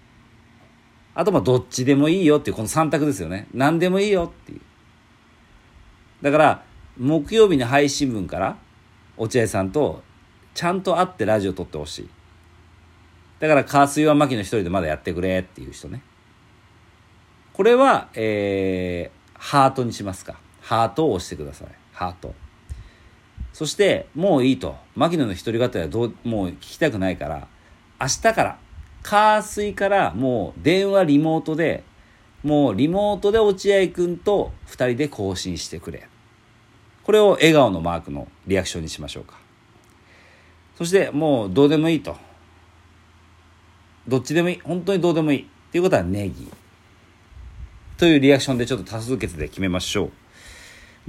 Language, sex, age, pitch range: Japanese, male, 50-69, 90-150 Hz